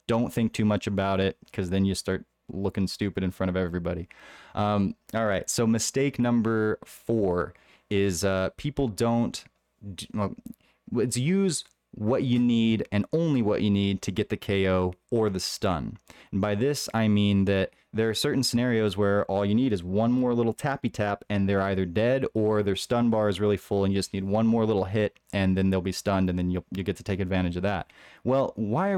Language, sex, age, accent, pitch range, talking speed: English, male, 30-49, American, 95-120 Hz, 210 wpm